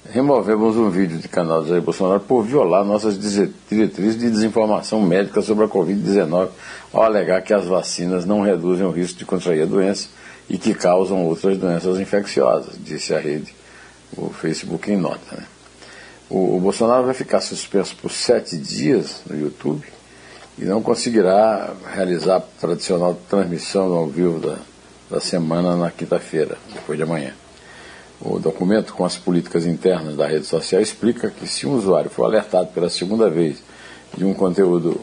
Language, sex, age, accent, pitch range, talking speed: Portuguese, male, 60-79, Brazilian, 85-110 Hz, 165 wpm